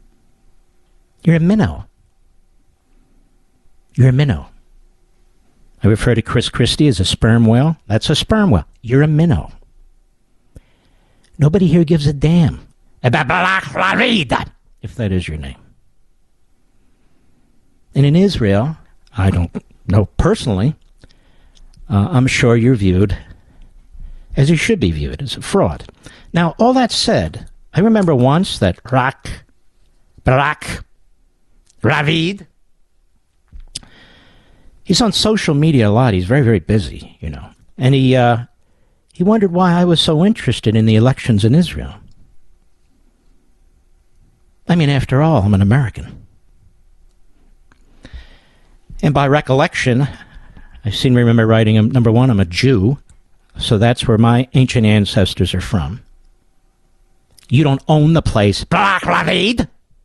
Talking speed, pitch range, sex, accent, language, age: 125 wpm, 95-150 Hz, male, American, English, 50-69